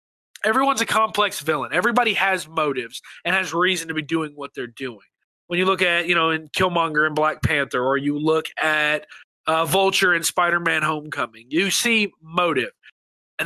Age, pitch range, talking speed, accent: 20-39, 165-220 Hz, 180 wpm, American